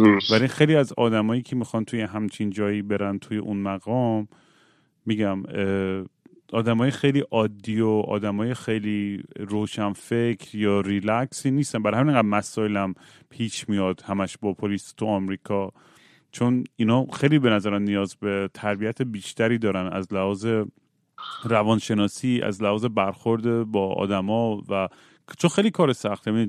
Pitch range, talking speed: 105-130 Hz, 130 wpm